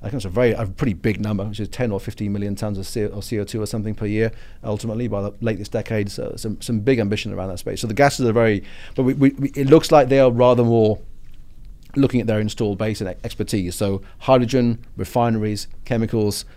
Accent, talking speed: British, 220 wpm